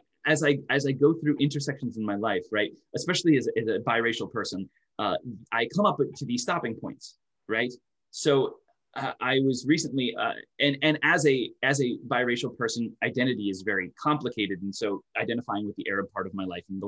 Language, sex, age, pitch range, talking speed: English, male, 20-39, 105-130 Hz, 200 wpm